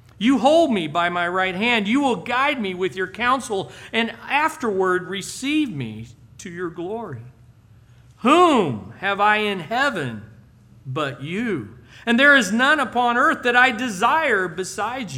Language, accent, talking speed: English, American, 150 wpm